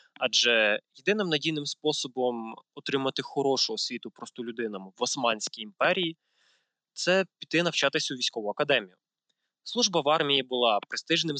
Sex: male